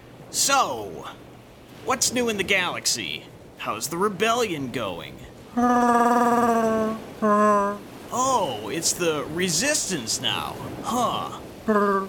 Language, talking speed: English, 80 wpm